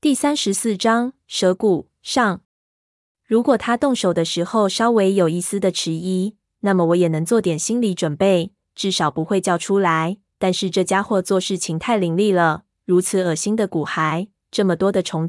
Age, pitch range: 20-39, 170-205 Hz